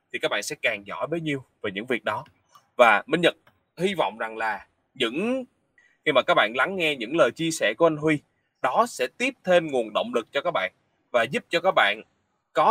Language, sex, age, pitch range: English, male, 20-39, 140-195 Hz